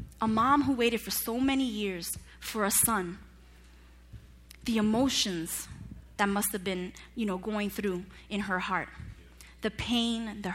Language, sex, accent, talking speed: English, female, American, 155 wpm